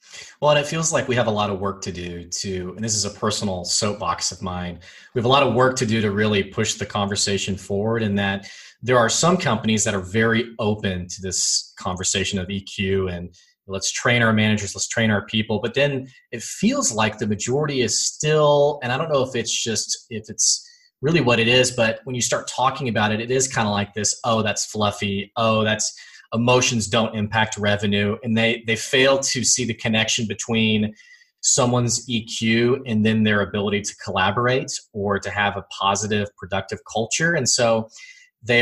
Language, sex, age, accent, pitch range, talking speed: English, male, 20-39, American, 100-125 Hz, 205 wpm